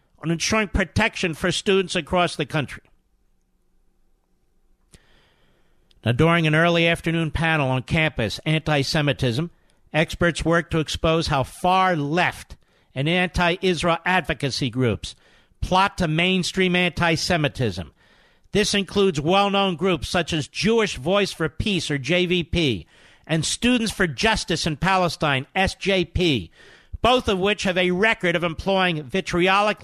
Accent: American